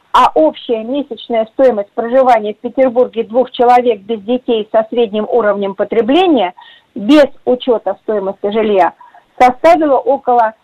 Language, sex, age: Russian, female, 40-59